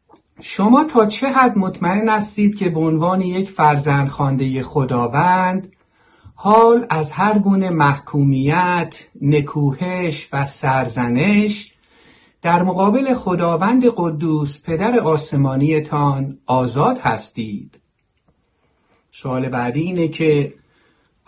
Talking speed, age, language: 90 wpm, 50-69, Persian